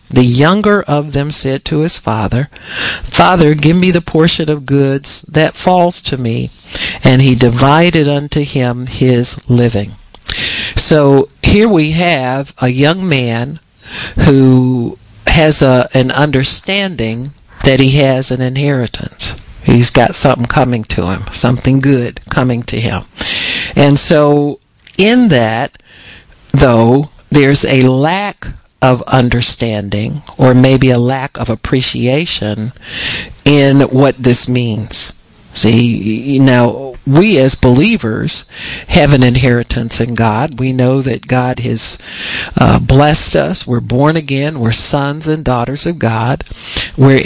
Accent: American